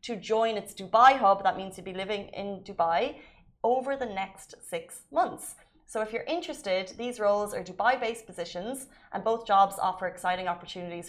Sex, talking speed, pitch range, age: female, 175 wpm, 180-225 Hz, 20-39